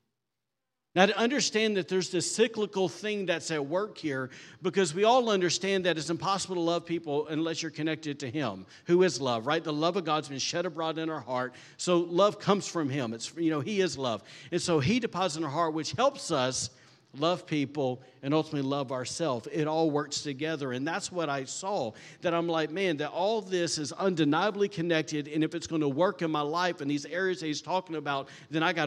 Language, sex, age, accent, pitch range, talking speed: English, male, 50-69, American, 140-180 Hz, 220 wpm